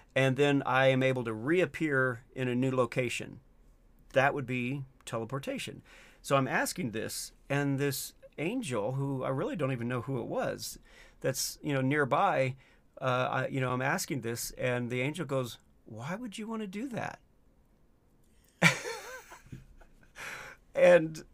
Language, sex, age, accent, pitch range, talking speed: English, male, 40-59, American, 125-160 Hz, 150 wpm